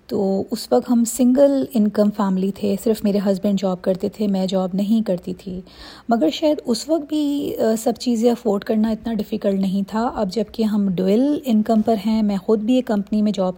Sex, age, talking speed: female, 30-49, 205 wpm